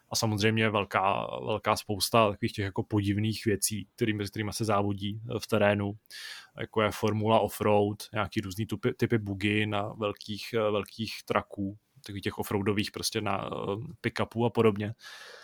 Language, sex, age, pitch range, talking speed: Czech, male, 20-39, 105-115 Hz, 150 wpm